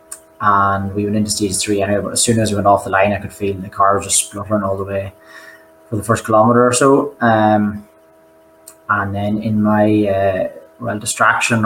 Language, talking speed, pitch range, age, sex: English, 210 wpm, 100-110 Hz, 20-39, male